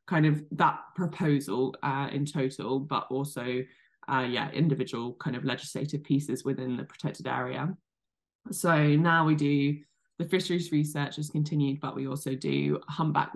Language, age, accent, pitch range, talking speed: English, 10-29, British, 135-150 Hz, 155 wpm